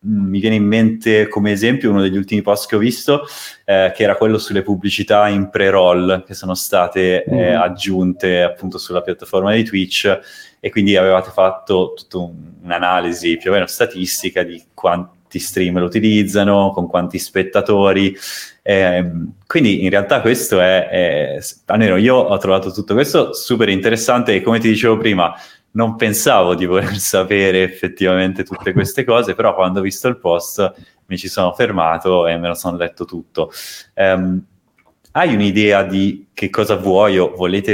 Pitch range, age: 90-105 Hz, 20-39